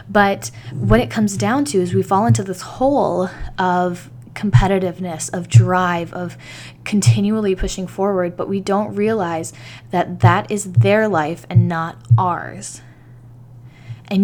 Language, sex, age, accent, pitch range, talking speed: English, female, 10-29, American, 120-185 Hz, 140 wpm